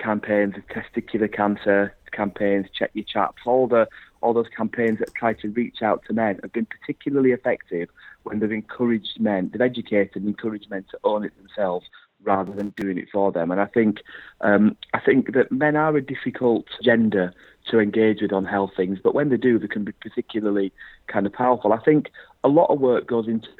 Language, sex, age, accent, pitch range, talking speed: English, male, 30-49, British, 95-110 Hz, 205 wpm